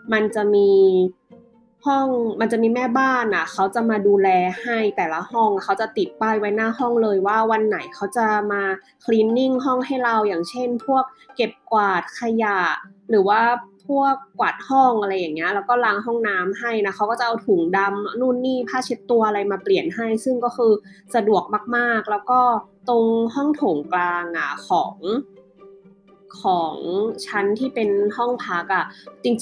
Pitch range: 200-245 Hz